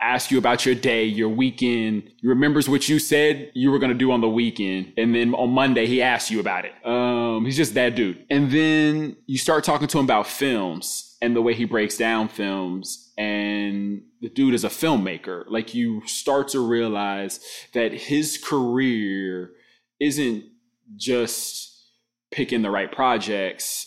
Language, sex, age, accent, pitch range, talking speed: English, male, 20-39, American, 110-130 Hz, 175 wpm